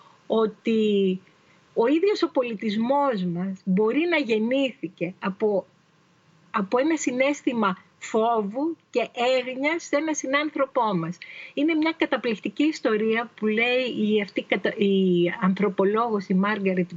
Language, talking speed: Greek, 110 wpm